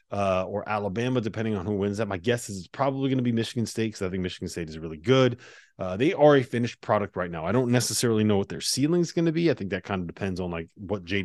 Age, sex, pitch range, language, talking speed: 30-49, male, 95-130 Hz, English, 295 wpm